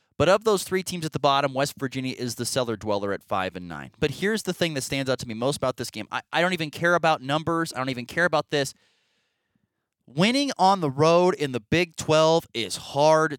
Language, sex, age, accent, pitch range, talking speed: English, male, 20-39, American, 125-155 Hz, 240 wpm